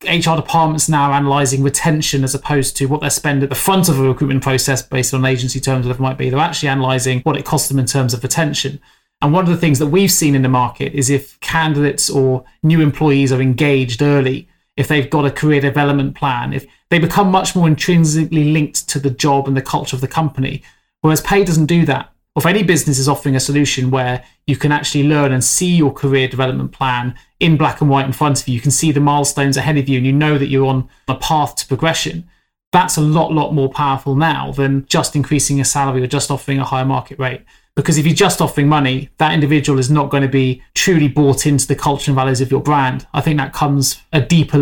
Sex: male